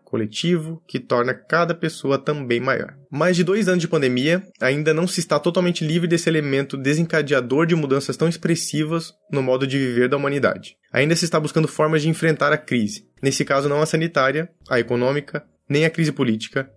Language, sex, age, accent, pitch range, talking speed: Portuguese, male, 20-39, Brazilian, 125-165 Hz, 185 wpm